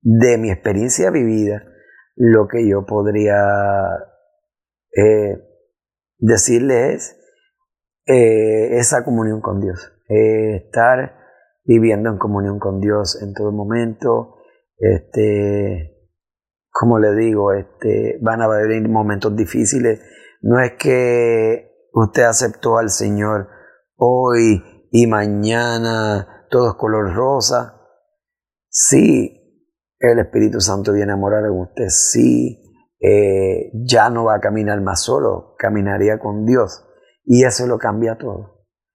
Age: 30-49